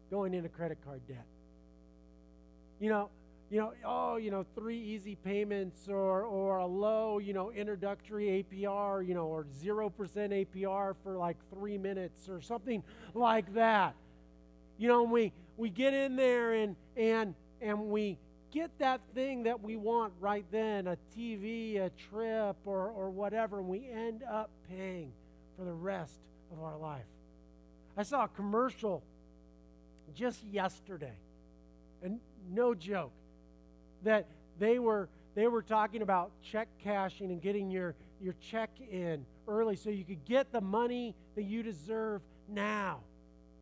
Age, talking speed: 40-59, 150 wpm